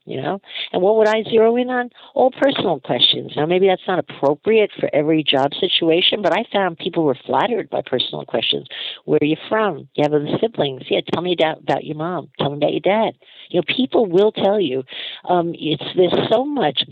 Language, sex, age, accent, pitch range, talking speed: English, female, 50-69, American, 150-200 Hz, 215 wpm